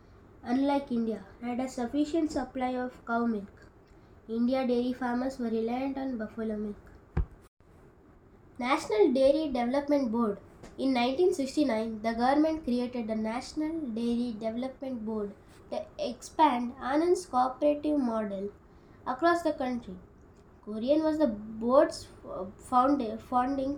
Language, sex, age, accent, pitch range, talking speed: English, female, 20-39, Indian, 230-300 Hz, 110 wpm